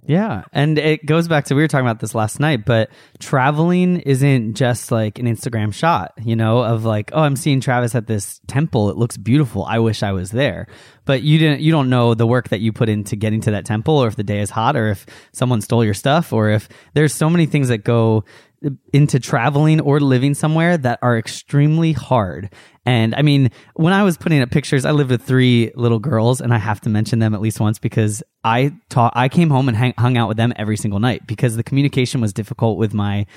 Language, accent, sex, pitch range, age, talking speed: English, American, male, 115-145 Hz, 20-39, 235 wpm